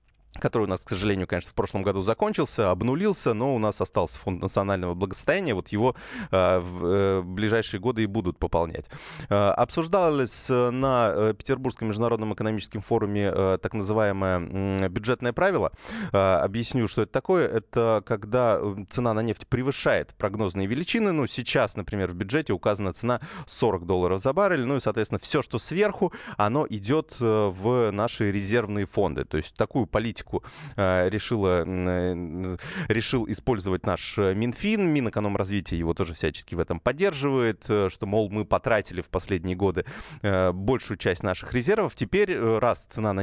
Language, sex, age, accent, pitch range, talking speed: Russian, male, 20-39, native, 95-125 Hz, 150 wpm